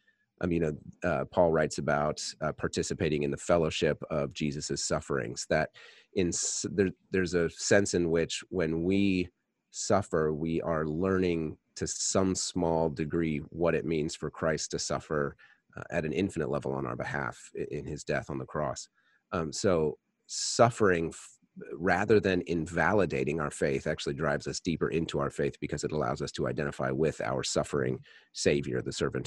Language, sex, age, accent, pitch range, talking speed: English, male, 30-49, American, 70-90 Hz, 170 wpm